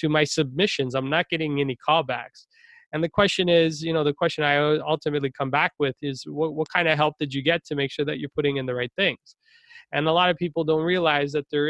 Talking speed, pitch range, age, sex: 250 wpm, 140-165 Hz, 20-39, male